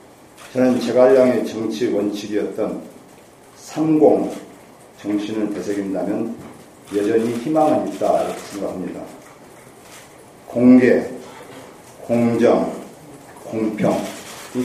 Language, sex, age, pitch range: Korean, male, 40-59, 110-145 Hz